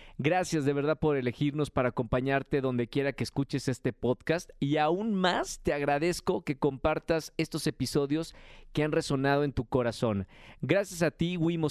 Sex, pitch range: male, 130-160 Hz